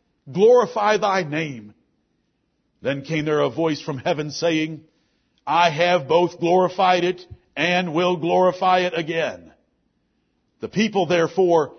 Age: 50-69